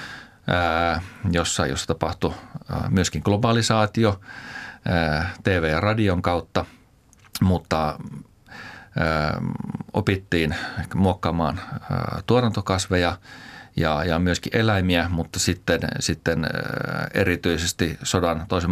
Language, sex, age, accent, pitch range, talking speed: Finnish, male, 40-59, native, 80-100 Hz, 70 wpm